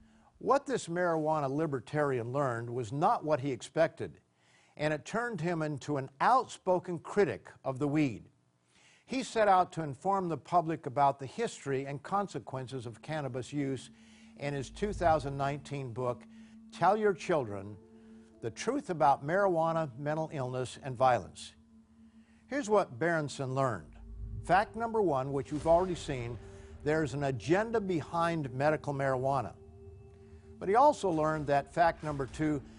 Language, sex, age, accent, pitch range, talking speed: English, male, 50-69, American, 130-170 Hz, 140 wpm